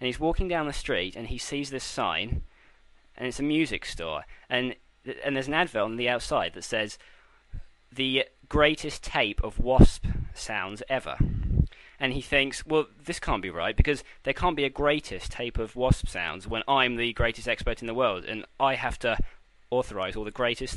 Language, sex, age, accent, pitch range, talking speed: English, male, 20-39, British, 115-145 Hz, 195 wpm